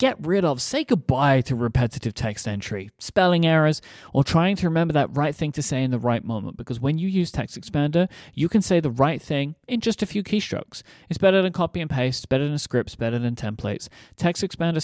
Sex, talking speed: male, 225 wpm